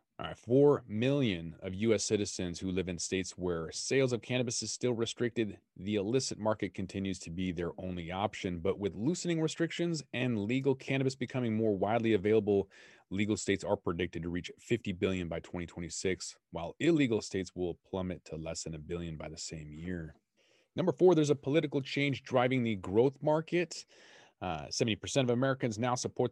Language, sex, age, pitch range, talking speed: English, male, 30-49, 90-125 Hz, 170 wpm